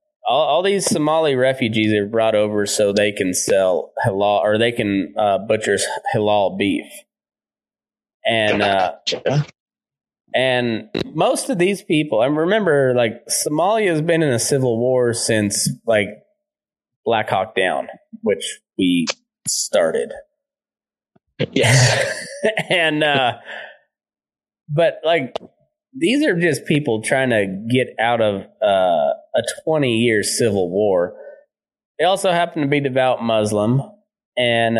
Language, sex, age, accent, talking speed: English, male, 20-39, American, 125 wpm